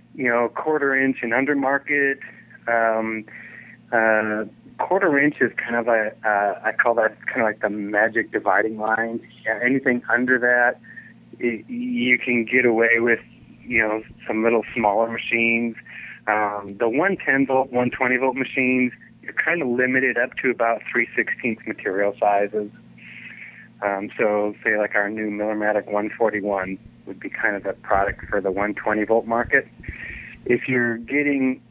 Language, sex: English, male